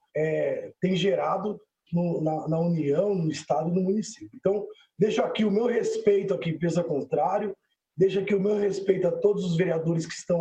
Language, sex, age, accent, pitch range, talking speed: Portuguese, male, 20-39, Brazilian, 175-220 Hz, 185 wpm